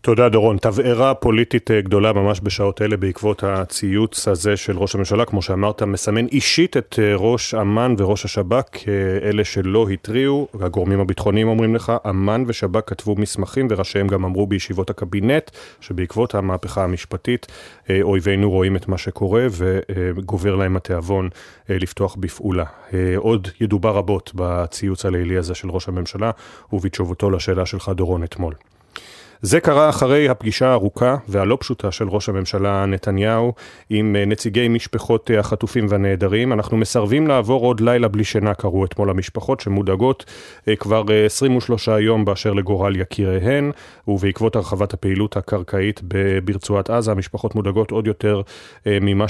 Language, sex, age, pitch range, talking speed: Hebrew, male, 30-49, 95-115 Hz, 135 wpm